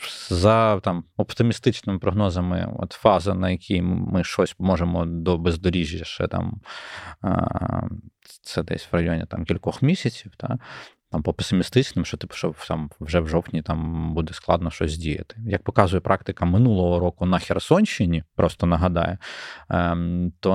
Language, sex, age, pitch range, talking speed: Ukrainian, male, 20-39, 85-105 Hz, 140 wpm